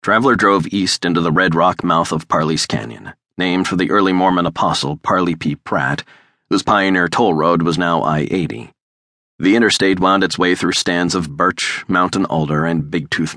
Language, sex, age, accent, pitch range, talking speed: English, male, 30-49, American, 75-90 Hz, 180 wpm